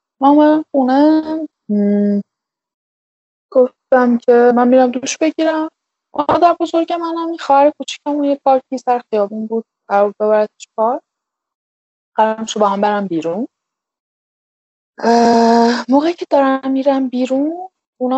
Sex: female